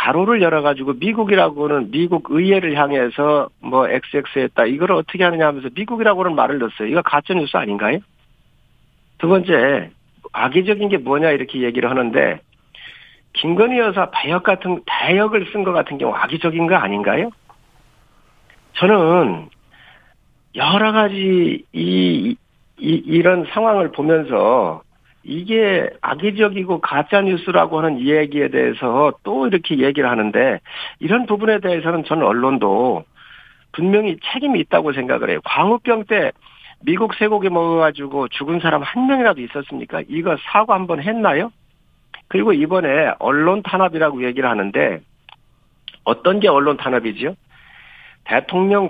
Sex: male